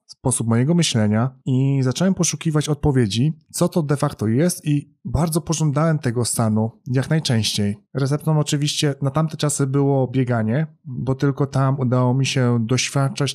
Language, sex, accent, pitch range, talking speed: Polish, male, native, 120-145 Hz, 150 wpm